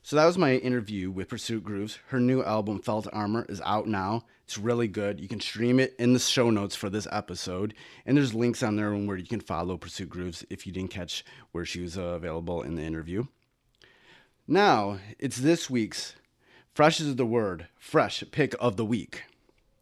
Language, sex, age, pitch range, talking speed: English, male, 30-49, 100-130 Hz, 200 wpm